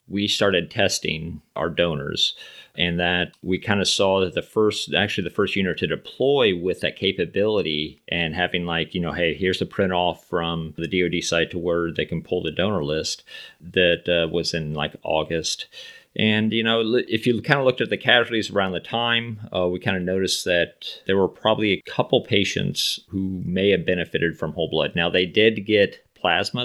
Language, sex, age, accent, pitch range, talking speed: English, male, 30-49, American, 85-105 Hz, 200 wpm